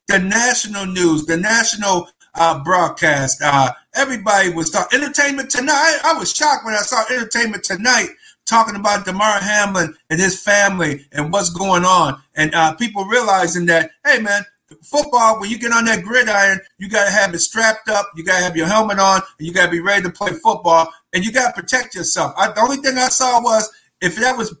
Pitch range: 170-220 Hz